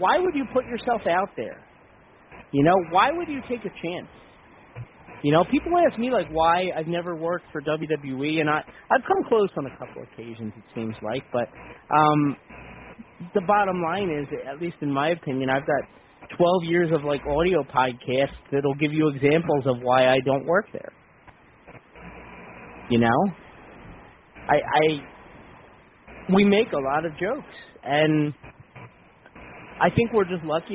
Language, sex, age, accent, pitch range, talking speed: English, male, 30-49, American, 145-195 Hz, 165 wpm